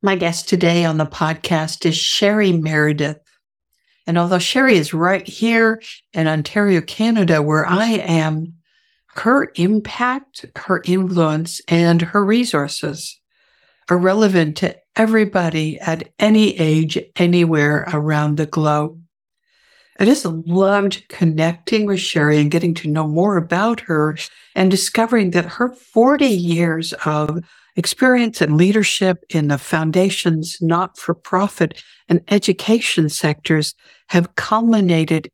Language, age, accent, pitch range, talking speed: English, 60-79, American, 165-205 Hz, 120 wpm